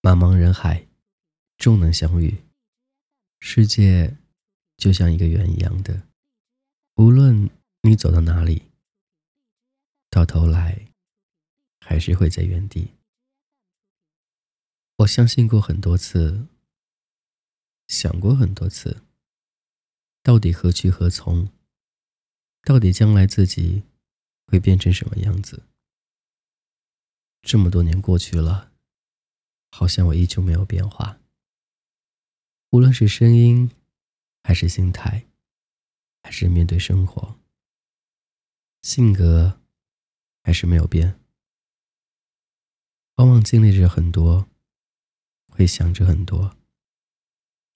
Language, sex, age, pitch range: Chinese, male, 20-39, 90-120 Hz